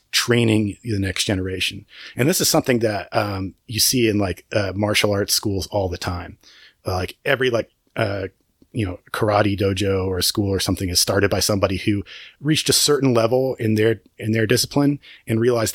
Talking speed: 195 wpm